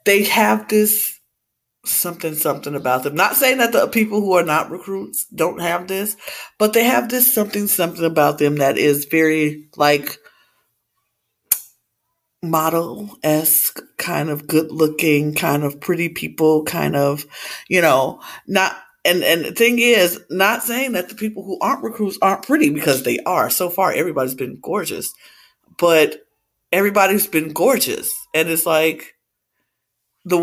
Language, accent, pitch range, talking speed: English, American, 155-215 Hz, 150 wpm